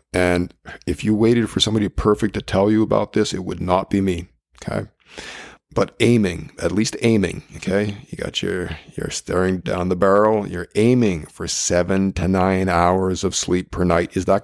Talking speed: 185 wpm